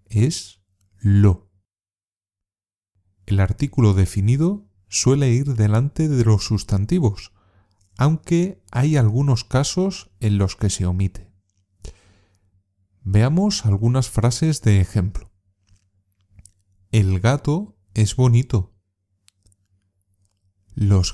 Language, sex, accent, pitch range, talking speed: Spanish, male, Spanish, 95-120 Hz, 85 wpm